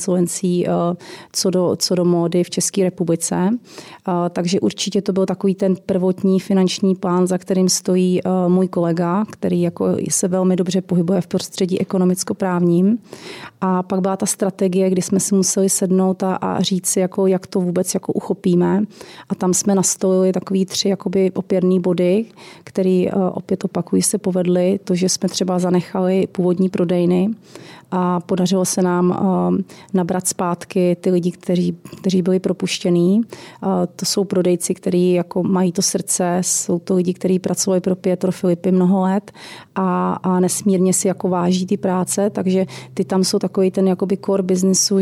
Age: 30-49